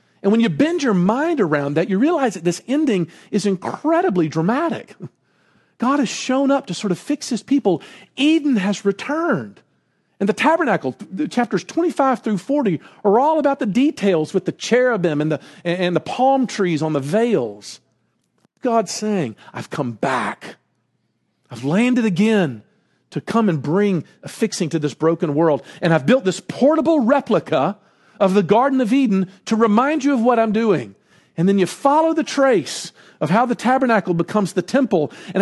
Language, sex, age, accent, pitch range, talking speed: English, male, 50-69, American, 175-260 Hz, 175 wpm